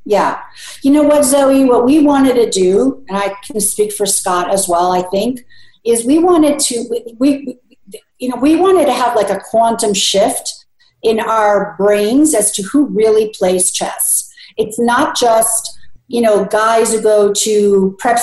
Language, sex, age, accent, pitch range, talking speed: English, female, 50-69, American, 195-255 Hz, 180 wpm